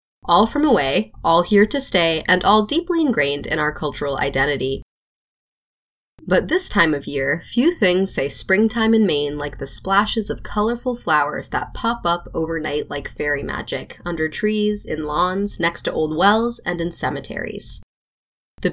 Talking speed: 165 wpm